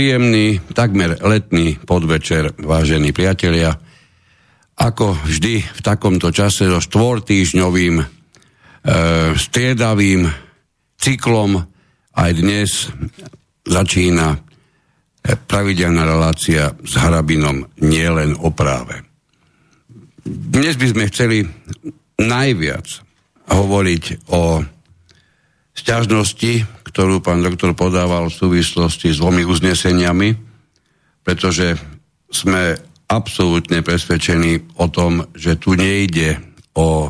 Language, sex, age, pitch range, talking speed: Slovak, male, 60-79, 80-100 Hz, 85 wpm